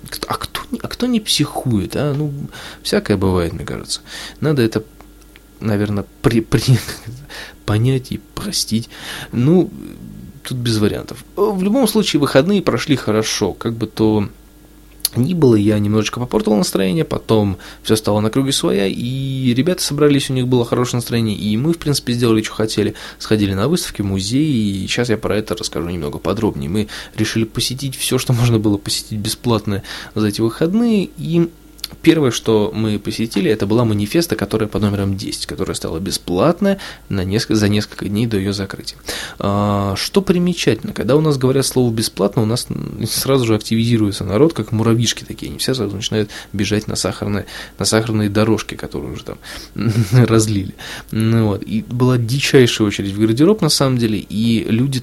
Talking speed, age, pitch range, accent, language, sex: 160 wpm, 20-39, 105-135 Hz, native, Russian, male